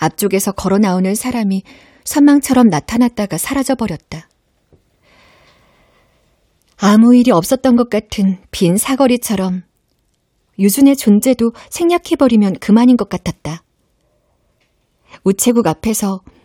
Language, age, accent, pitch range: Korean, 40-59, native, 195-265 Hz